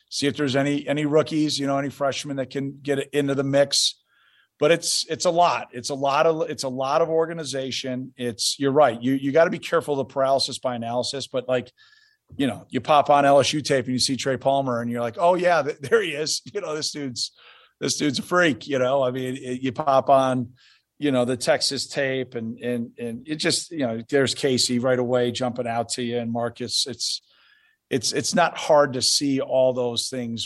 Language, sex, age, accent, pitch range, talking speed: English, male, 40-59, American, 125-140 Hz, 225 wpm